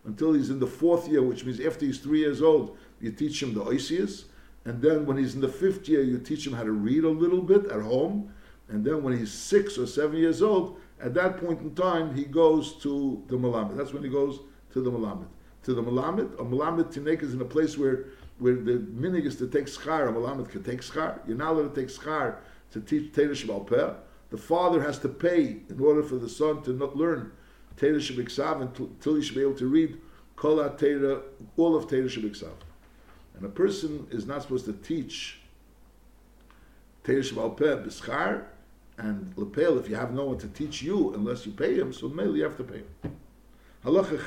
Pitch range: 125-160 Hz